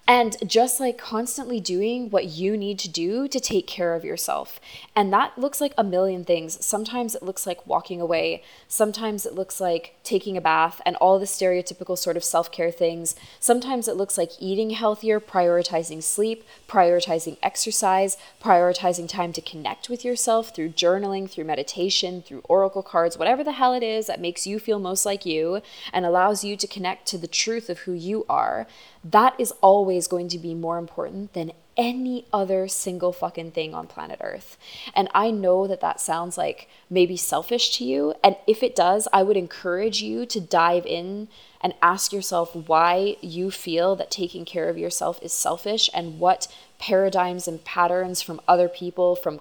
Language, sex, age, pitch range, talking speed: English, female, 20-39, 170-210 Hz, 185 wpm